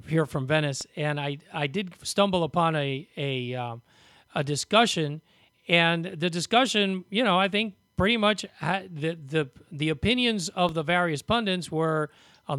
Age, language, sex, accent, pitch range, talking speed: 40-59, English, male, American, 145-180 Hz, 155 wpm